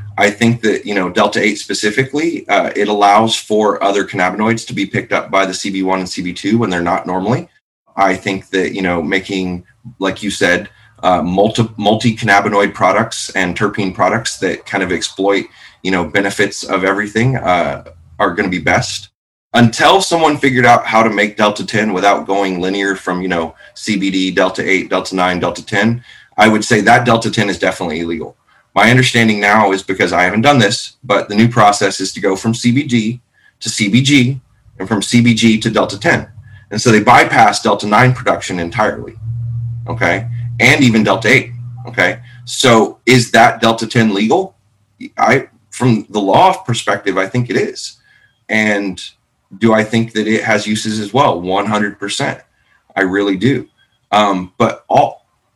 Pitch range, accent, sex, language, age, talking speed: 95-120 Hz, American, male, English, 30-49, 165 wpm